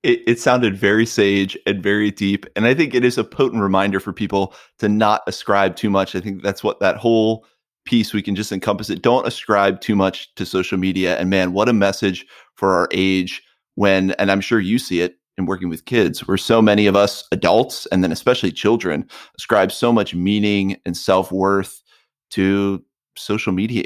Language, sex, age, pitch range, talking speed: English, male, 30-49, 95-115 Hz, 200 wpm